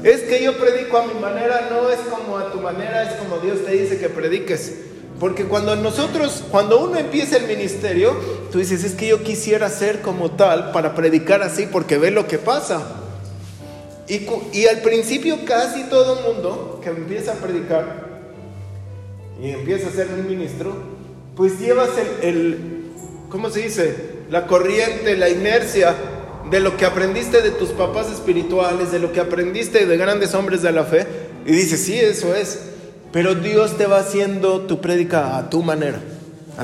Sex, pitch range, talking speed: male, 165-220 Hz, 175 wpm